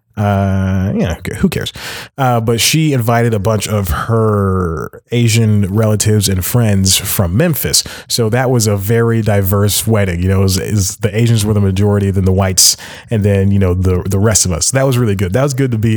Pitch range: 100-130 Hz